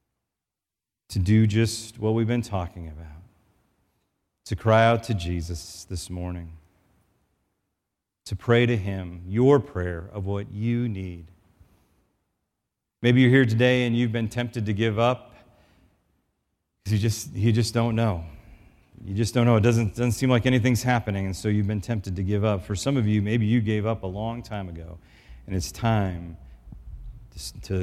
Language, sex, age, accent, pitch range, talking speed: English, male, 40-59, American, 95-115 Hz, 170 wpm